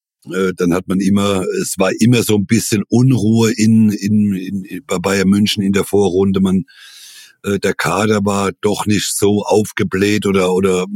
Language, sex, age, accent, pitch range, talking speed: German, male, 60-79, German, 95-110 Hz, 165 wpm